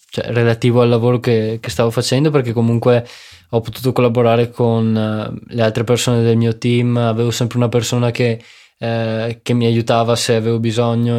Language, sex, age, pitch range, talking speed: Italian, male, 20-39, 120-135 Hz, 165 wpm